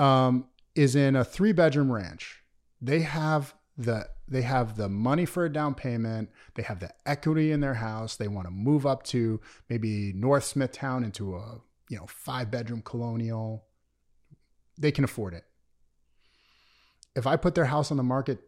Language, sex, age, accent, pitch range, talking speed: English, male, 30-49, American, 105-140 Hz, 170 wpm